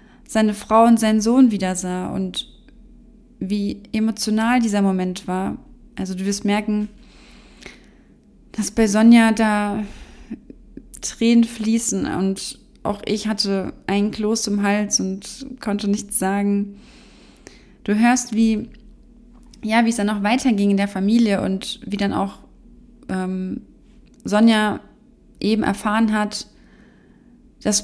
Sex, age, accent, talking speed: female, 20-39, German, 125 wpm